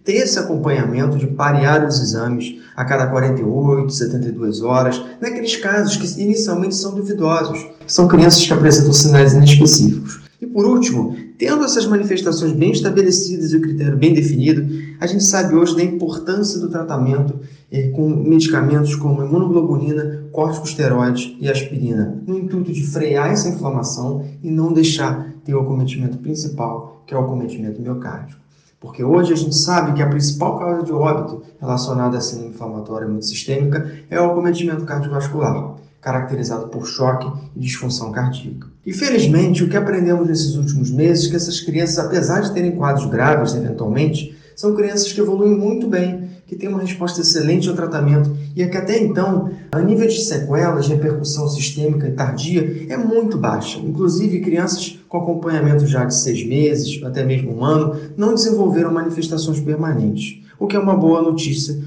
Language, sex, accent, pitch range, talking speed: Portuguese, male, Brazilian, 140-175 Hz, 160 wpm